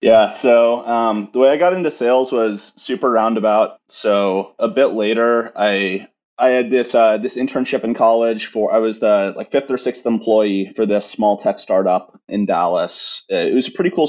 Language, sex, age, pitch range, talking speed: English, male, 30-49, 100-125 Hz, 195 wpm